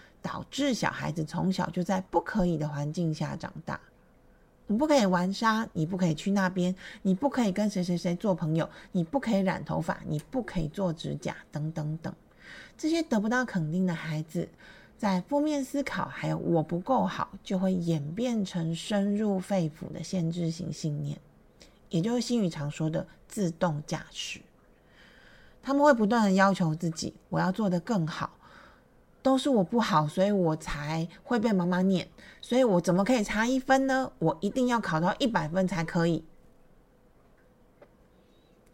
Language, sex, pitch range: Chinese, female, 165-210 Hz